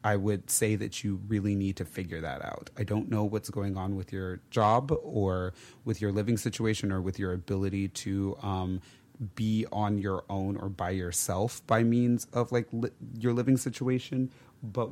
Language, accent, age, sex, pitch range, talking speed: English, American, 30-49, male, 100-125 Hz, 190 wpm